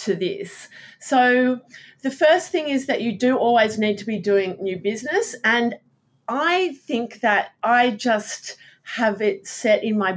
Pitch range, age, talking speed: 185-240 Hz, 40-59, 165 wpm